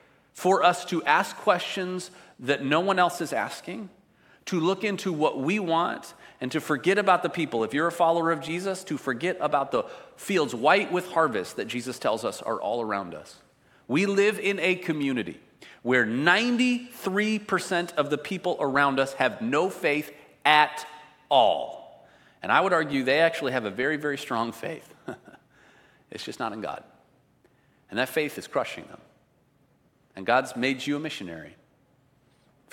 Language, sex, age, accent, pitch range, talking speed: English, male, 40-59, American, 120-165 Hz, 170 wpm